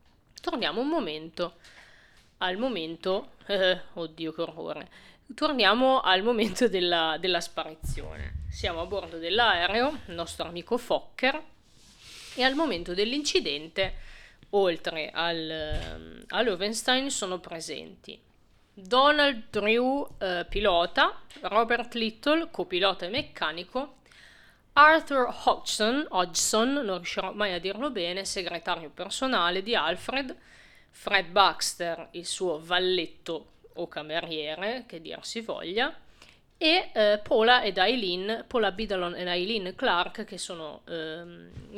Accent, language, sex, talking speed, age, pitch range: native, Italian, female, 110 wpm, 30-49, 170-235 Hz